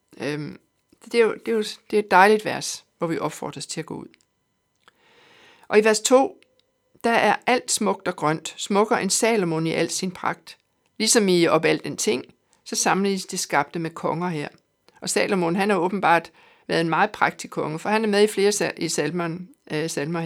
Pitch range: 170-220 Hz